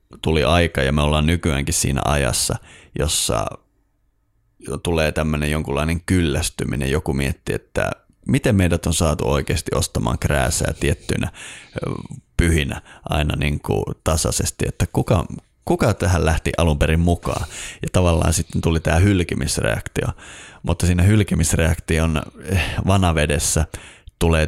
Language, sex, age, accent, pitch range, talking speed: Finnish, male, 30-49, native, 80-100 Hz, 120 wpm